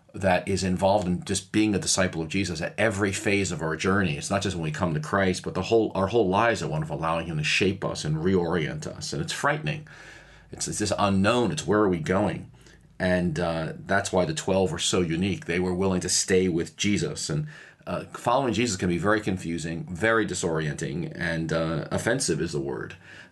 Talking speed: 220 wpm